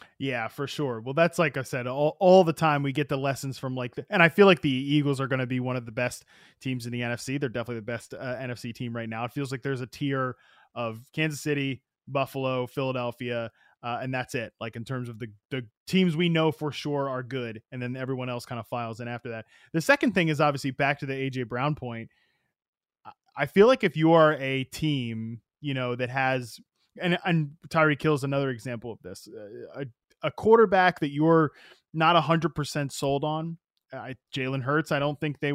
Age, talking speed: 20-39, 225 wpm